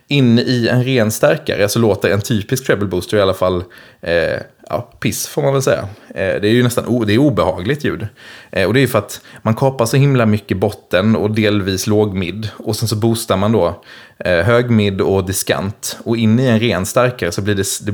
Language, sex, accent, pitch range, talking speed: English, male, Swedish, 100-120 Hz, 225 wpm